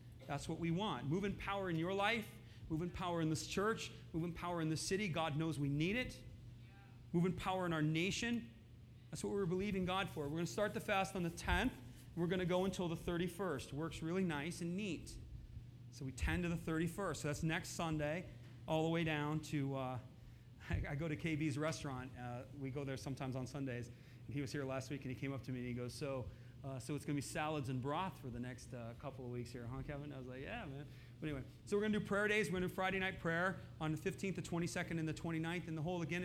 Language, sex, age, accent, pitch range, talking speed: English, male, 40-59, American, 130-185 Hz, 255 wpm